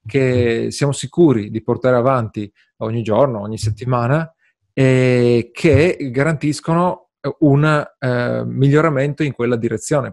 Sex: male